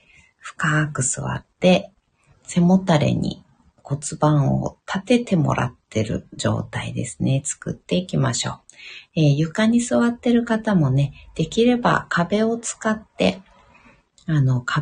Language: Japanese